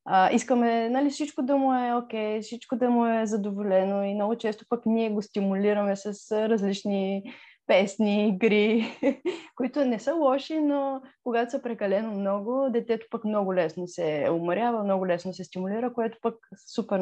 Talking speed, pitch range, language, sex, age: 160 wpm, 195-250 Hz, Bulgarian, female, 20-39